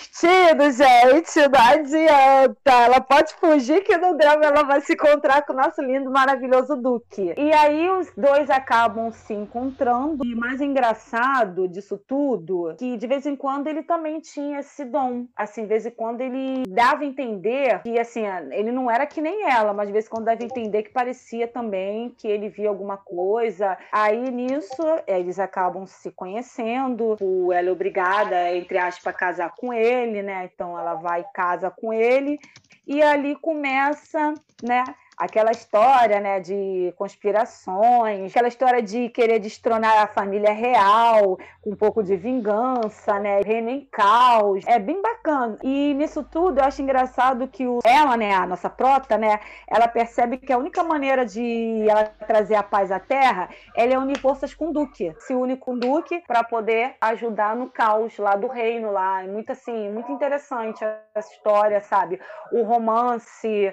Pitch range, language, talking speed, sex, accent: 210-275 Hz, Portuguese, 170 wpm, female, Brazilian